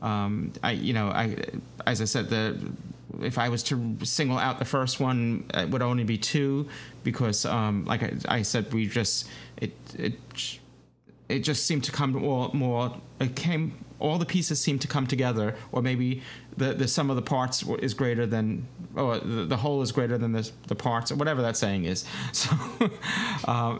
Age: 30-49